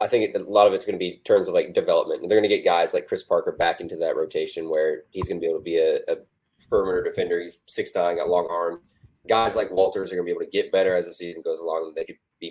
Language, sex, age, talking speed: English, male, 20-39, 300 wpm